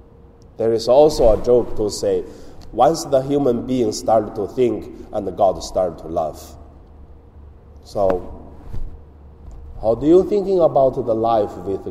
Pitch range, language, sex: 90-130 Hz, Chinese, male